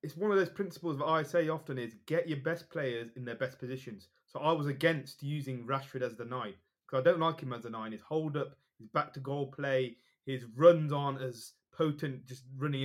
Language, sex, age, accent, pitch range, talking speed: English, male, 20-39, British, 125-145 Hz, 235 wpm